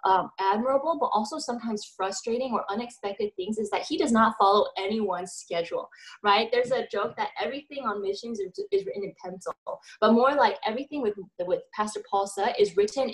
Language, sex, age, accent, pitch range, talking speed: English, female, 20-39, American, 185-240 Hz, 185 wpm